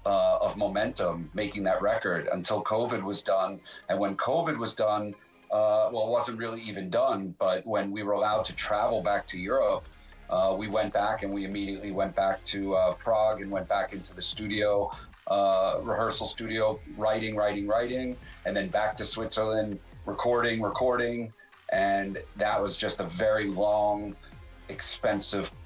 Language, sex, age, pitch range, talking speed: English, male, 40-59, 95-110 Hz, 165 wpm